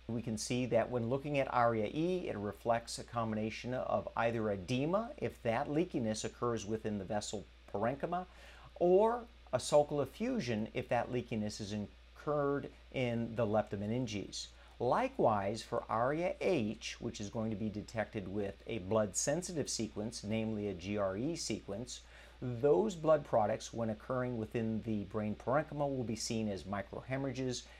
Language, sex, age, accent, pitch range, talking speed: English, male, 50-69, American, 105-140 Hz, 150 wpm